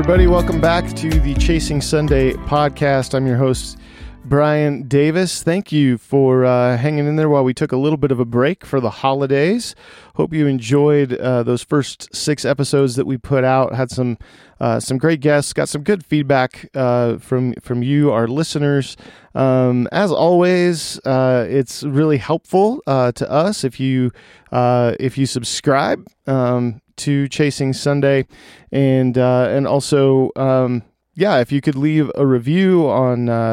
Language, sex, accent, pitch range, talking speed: English, male, American, 125-145 Hz, 165 wpm